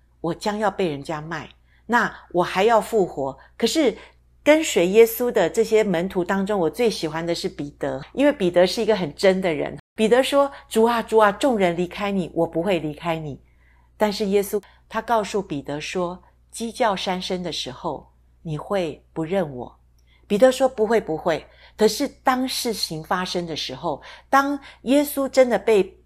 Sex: female